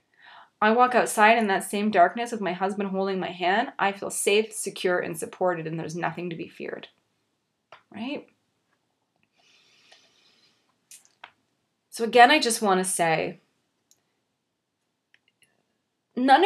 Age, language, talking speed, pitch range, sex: 20-39, English, 125 wpm, 170-215 Hz, female